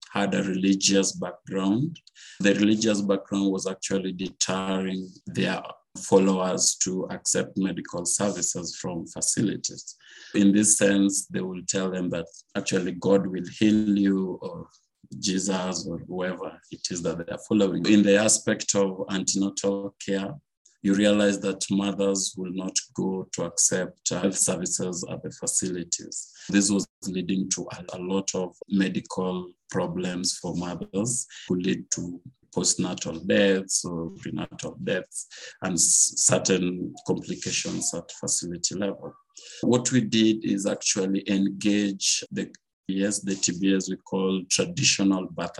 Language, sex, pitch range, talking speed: English, male, 95-100 Hz, 130 wpm